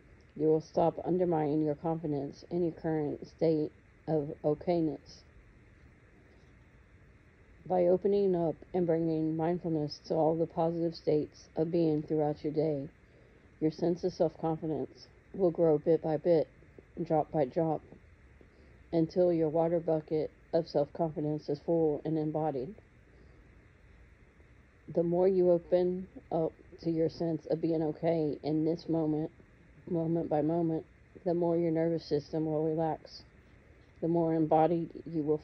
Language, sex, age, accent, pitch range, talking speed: English, female, 40-59, American, 155-170 Hz, 135 wpm